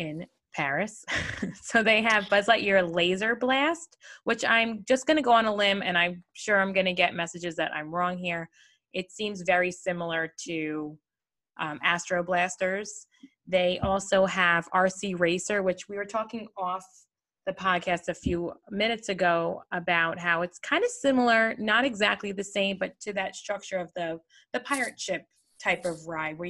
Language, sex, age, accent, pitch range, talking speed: English, female, 20-39, American, 170-205 Hz, 175 wpm